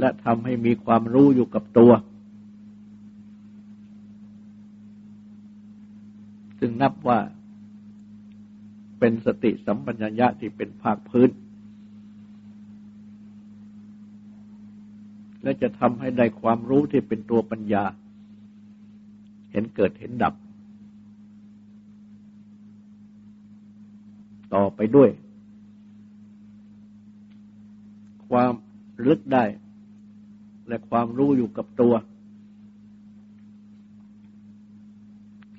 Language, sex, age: Thai, male, 60-79